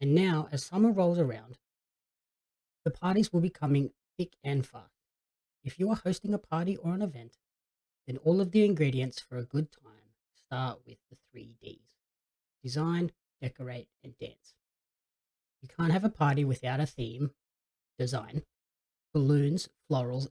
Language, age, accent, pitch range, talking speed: English, 30-49, Australian, 125-175 Hz, 155 wpm